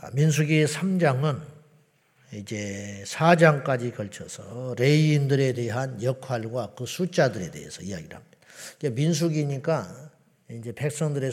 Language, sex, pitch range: Korean, male, 125-155 Hz